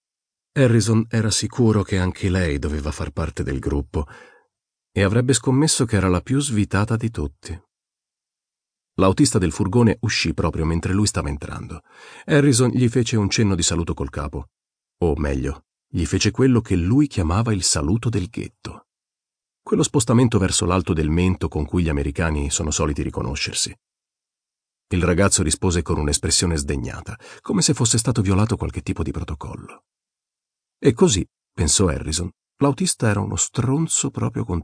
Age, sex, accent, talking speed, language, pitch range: 40-59, male, native, 155 wpm, Italian, 80-115 Hz